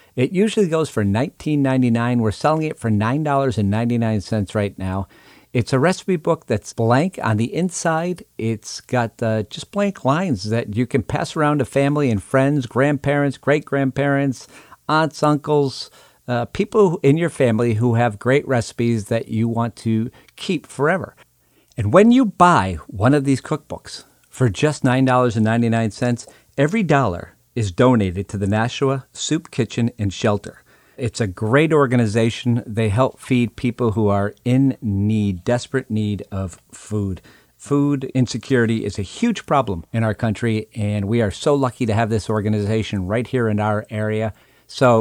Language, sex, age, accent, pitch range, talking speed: English, male, 50-69, American, 110-140 Hz, 155 wpm